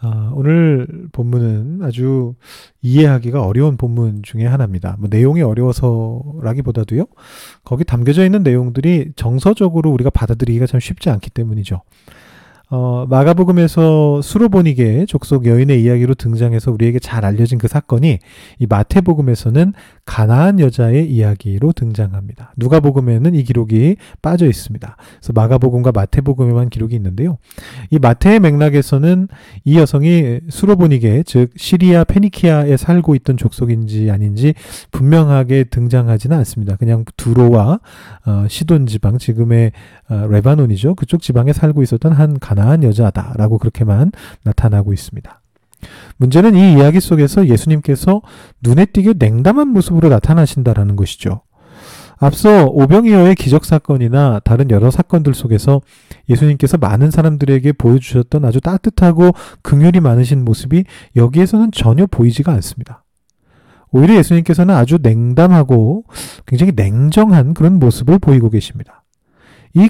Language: English